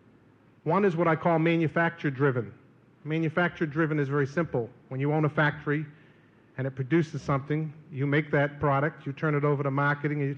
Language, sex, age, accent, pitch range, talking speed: English, male, 50-69, American, 140-170 Hz, 180 wpm